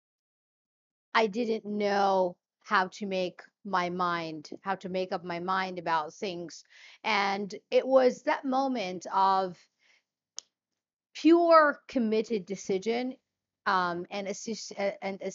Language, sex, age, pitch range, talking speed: English, female, 50-69, 190-235 Hz, 115 wpm